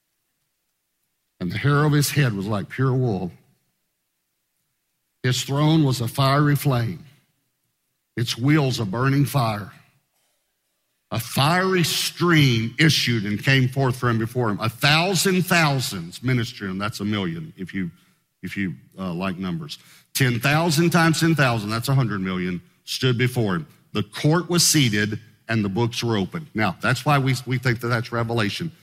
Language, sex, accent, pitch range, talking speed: English, male, American, 110-150 Hz, 150 wpm